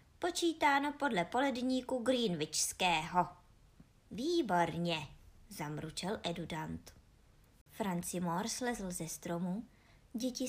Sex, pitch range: male, 170-240 Hz